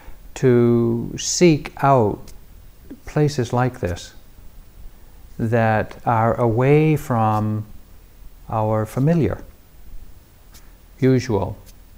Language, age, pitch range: English, 60-79, 100-125 Hz